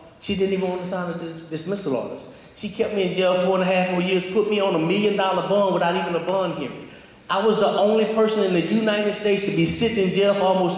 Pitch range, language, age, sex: 155-200 Hz, English, 30-49, male